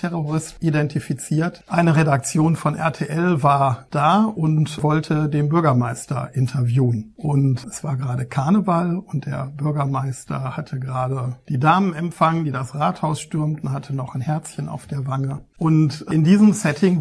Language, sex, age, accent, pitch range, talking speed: German, male, 60-79, German, 140-160 Hz, 140 wpm